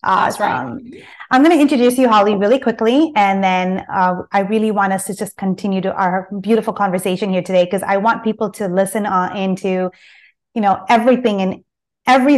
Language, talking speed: English, 190 wpm